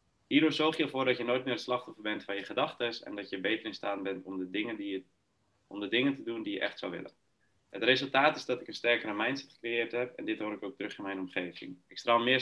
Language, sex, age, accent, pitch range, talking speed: Dutch, male, 30-49, Dutch, 95-125 Hz, 260 wpm